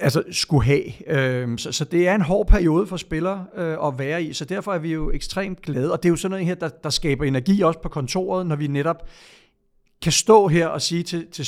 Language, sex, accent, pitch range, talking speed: Danish, male, native, 135-170 Hz, 225 wpm